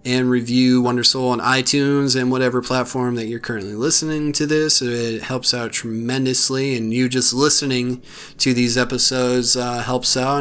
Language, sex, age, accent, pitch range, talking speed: English, male, 30-49, American, 125-140 Hz, 160 wpm